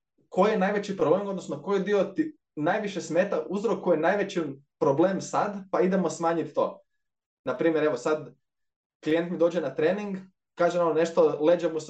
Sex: male